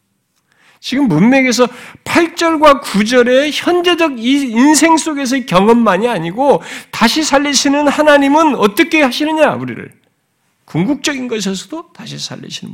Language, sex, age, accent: Korean, male, 50-69, native